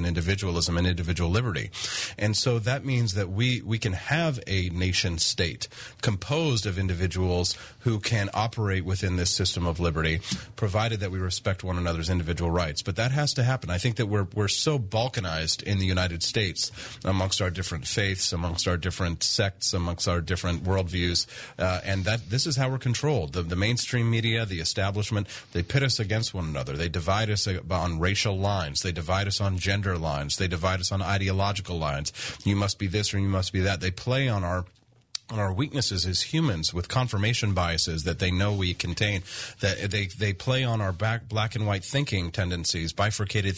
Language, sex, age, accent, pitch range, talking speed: English, male, 30-49, American, 90-110 Hz, 195 wpm